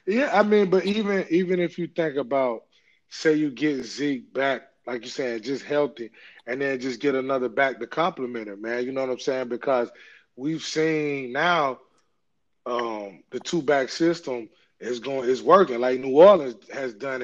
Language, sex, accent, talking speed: English, male, American, 185 wpm